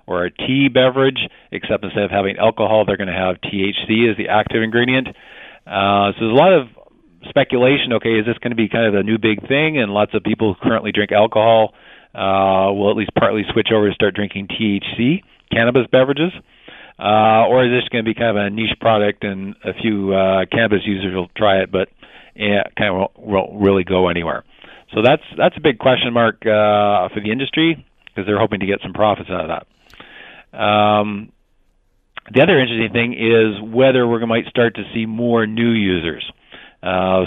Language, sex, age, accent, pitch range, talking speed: English, male, 40-59, American, 100-115 Hz, 200 wpm